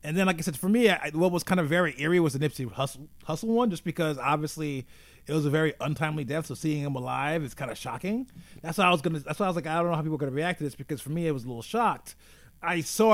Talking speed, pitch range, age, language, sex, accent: 305 wpm, 135-175 Hz, 30-49, English, male, American